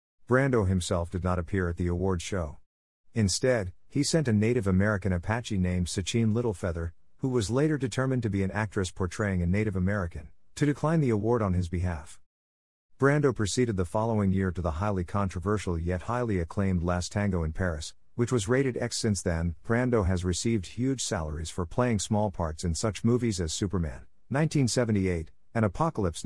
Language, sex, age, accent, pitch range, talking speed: English, male, 50-69, American, 90-115 Hz, 175 wpm